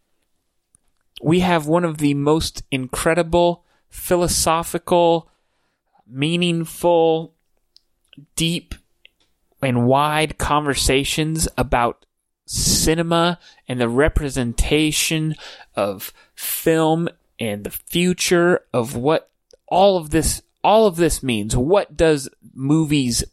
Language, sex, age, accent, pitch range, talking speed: English, male, 30-49, American, 125-165 Hz, 90 wpm